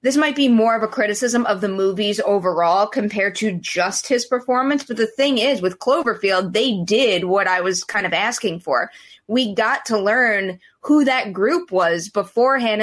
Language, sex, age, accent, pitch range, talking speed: English, female, 20-39, American, 200-255 Hz, 185 wpm